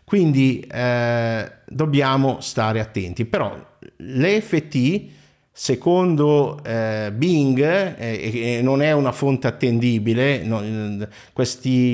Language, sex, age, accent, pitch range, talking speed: Italian, male, 50-69, native, 105-135 Hz, 95 wpm